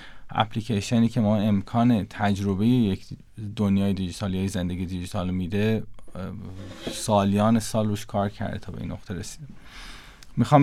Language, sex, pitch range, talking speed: Persian, male, 100-115 Hz, 135 wpm